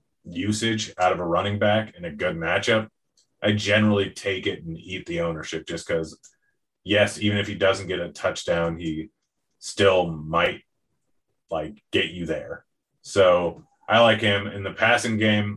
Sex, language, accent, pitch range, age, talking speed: male, English, American, 85-105 Hz, 30-49, 165 wpm